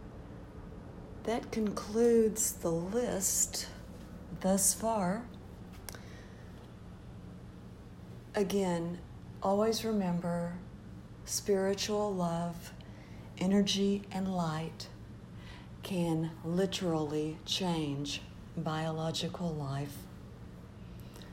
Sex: female